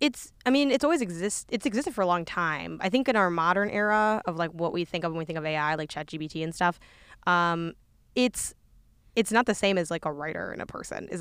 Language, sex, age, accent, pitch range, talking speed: English, female, 10-29, American, 160-200 Hz, 255 wpm